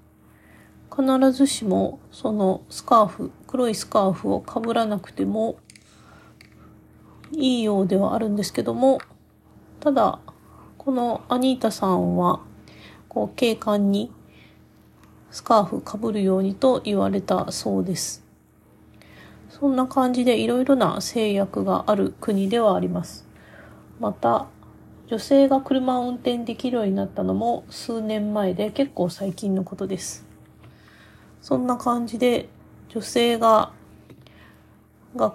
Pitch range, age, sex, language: 190-245 Hz, 40-59, female, Japanese